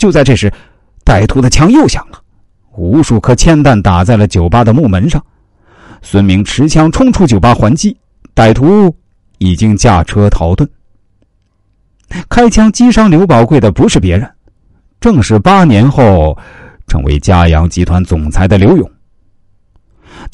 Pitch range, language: 95-140 Hz, Chinese